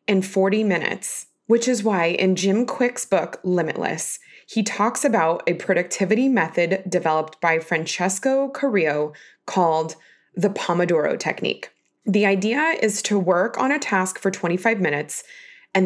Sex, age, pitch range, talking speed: female, 20-39, 180-230 Hz, 140 wpm